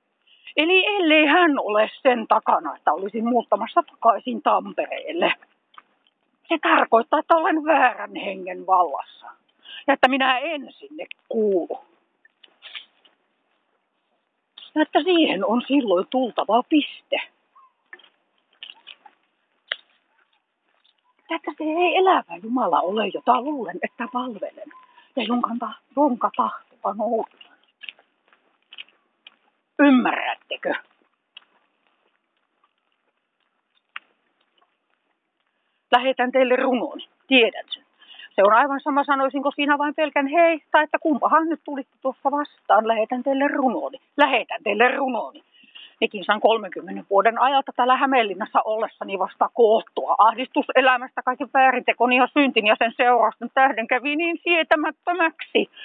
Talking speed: 100 wpm